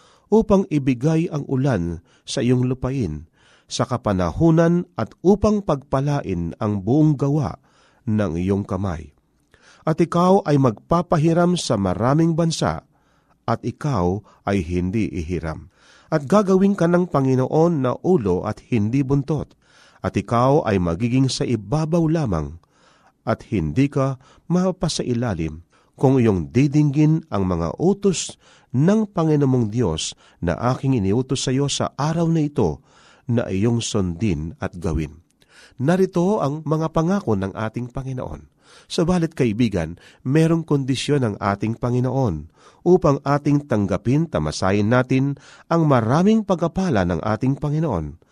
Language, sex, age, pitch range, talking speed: Filipino, male, 40-59, 105-160 Hz, 125 wpm